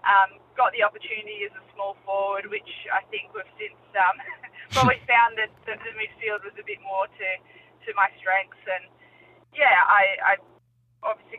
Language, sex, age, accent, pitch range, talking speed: English, female, 20-39, Australian, 180-220 Hz, 185 wpm